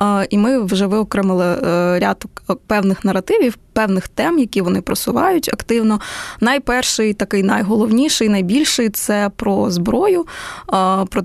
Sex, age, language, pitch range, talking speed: female, 20-39, Ukrainian, 185-225 Hz, 115 wpm